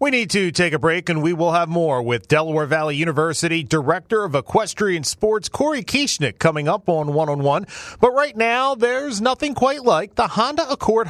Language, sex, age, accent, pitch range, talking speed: English, male, 30-49, American, 140-225 Hz, 200 wpm